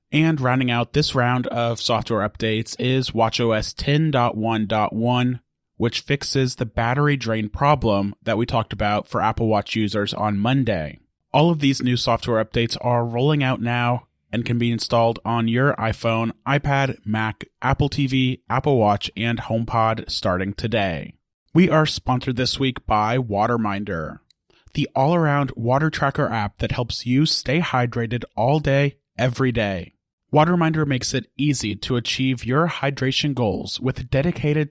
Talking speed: 150 wpm